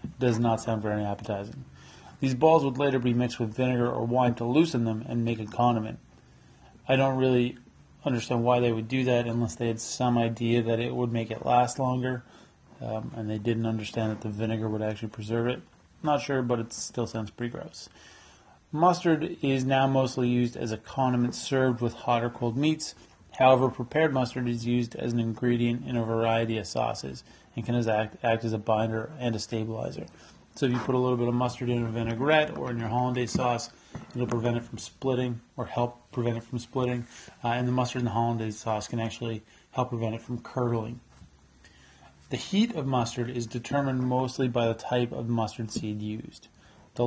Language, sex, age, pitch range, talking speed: English, male, 30-49, 115-125 Hz, 200 wpm